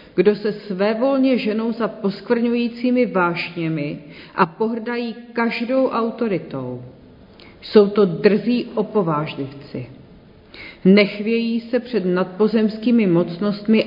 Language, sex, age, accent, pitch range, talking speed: Czech, female, 40-59, native, 180-235 Hz, 85 wpm